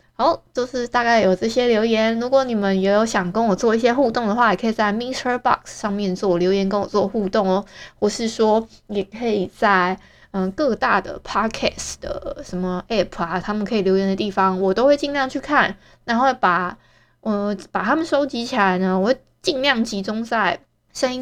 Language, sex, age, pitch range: Chinese, female, 20-39, 190-230 Hz